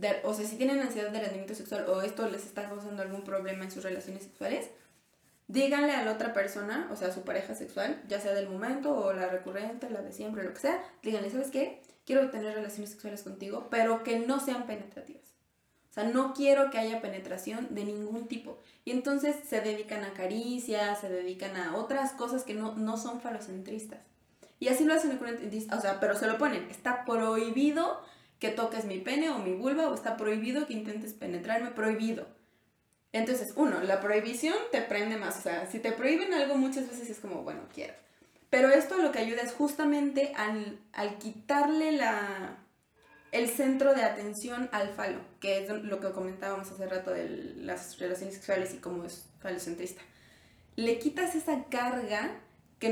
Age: 20-39